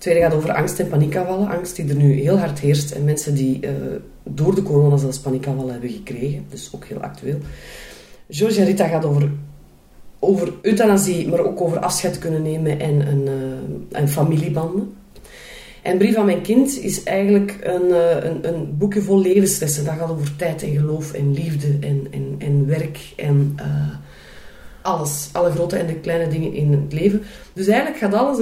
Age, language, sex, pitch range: 30-49, Dutch, female, 140-170 Hz